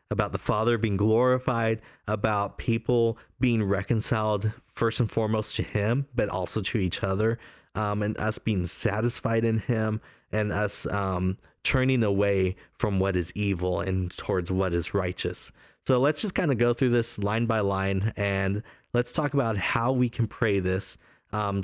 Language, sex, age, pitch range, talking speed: English, male, 20-39, 100-125 Hz, 170 wpm